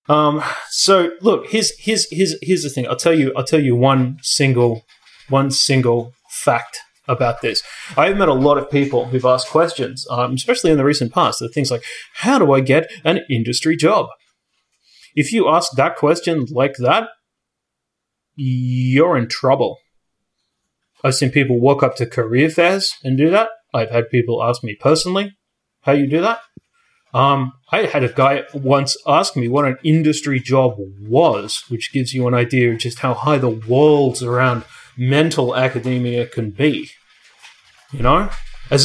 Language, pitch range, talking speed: English, 125-155 Hz, 170 wpm